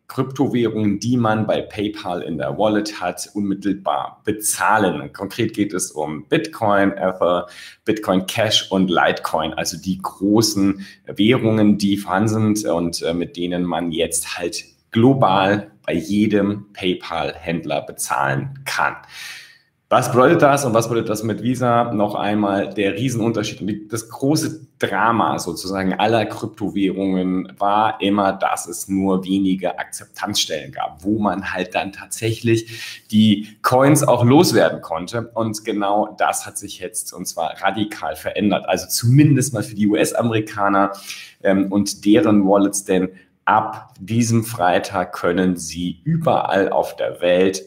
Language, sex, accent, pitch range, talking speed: German, male, German, 95-115 Hz, 135 wpm